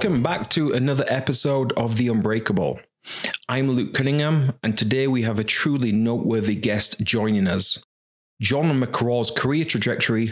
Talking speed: 145 wpm